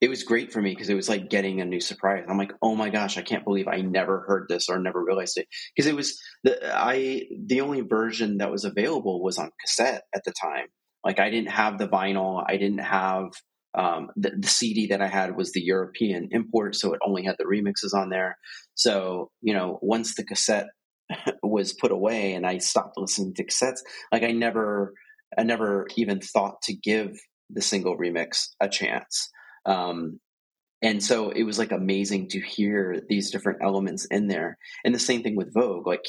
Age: 30-49